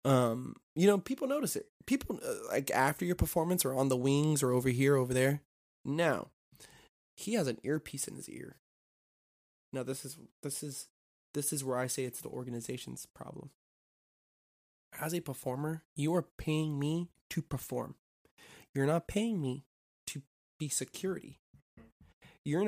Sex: male